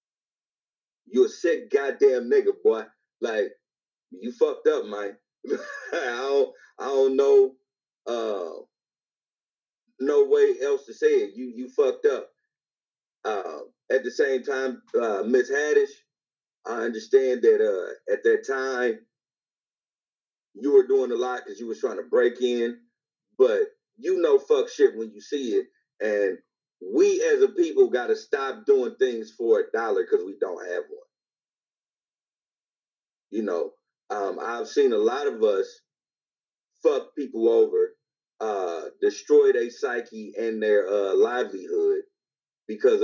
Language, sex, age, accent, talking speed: English, male, 30-49, American, 140 wpm